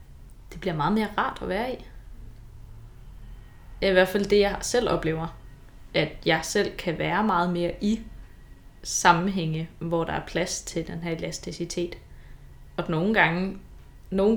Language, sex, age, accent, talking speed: Danish, female, 20-39, native, 150 wpm